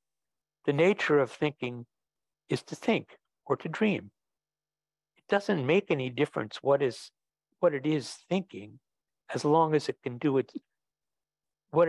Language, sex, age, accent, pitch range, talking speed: English, male, 60-79, American, 125-160 Hz, 145 wpm